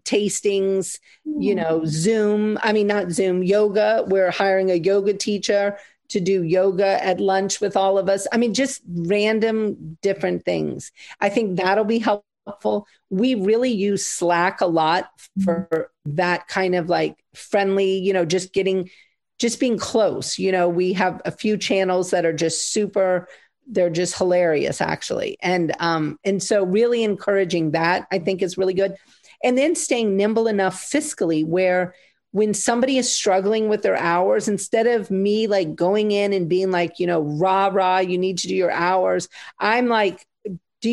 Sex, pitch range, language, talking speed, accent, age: female, 180-215 Hz, English, 170 wpm, American, 40-59